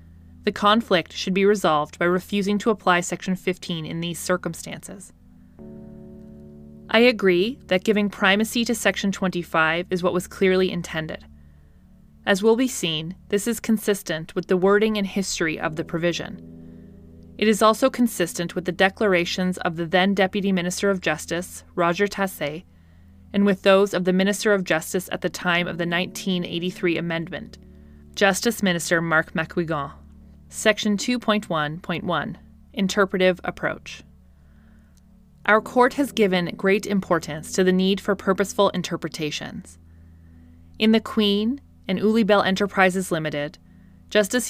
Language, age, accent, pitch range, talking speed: English, 20-39, American, 155-200 Hz, 140 wpm